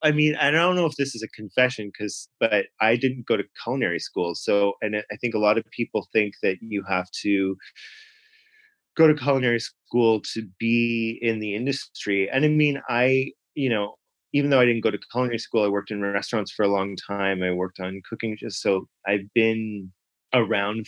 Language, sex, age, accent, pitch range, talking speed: English, male, 30-49, American, 95-120 Hz, 205 wpm